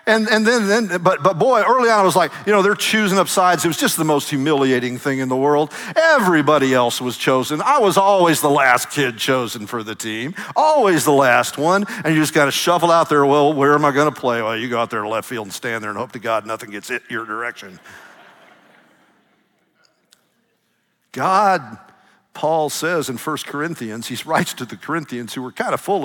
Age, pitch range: 50-69, 130-215 Hz